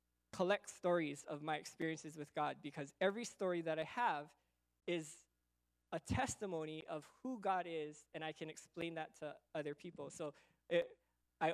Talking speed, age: 160 wpm, 20-39